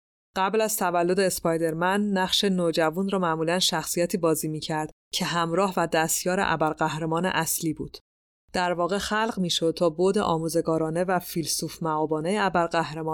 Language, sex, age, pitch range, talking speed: Persian, female, 30-49, 160-185 Hz, 135 wpm